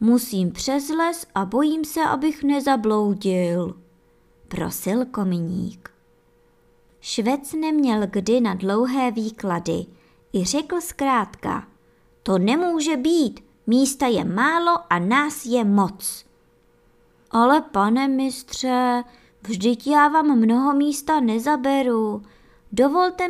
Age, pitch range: 20-39, 190-290 Hz